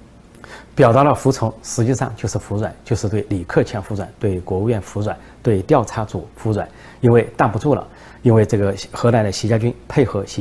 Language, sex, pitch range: Chinese, male, 100-125 Hz